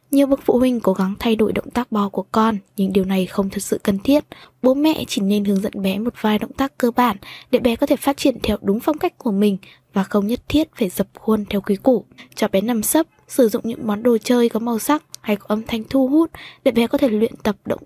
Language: Vietnamese